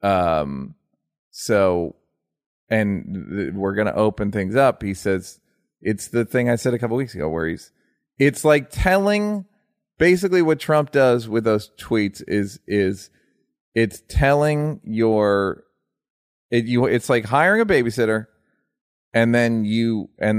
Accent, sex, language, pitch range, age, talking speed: American, male, English, 100-140 Hz, 30-49, 145 wpm